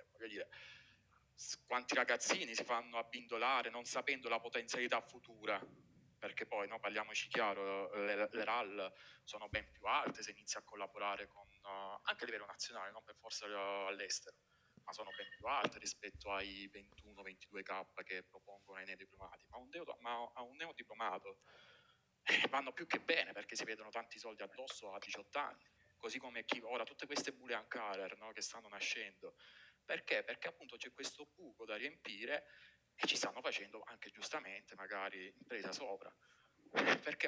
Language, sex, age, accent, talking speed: Italian, male, 30-49, native, 160 wpm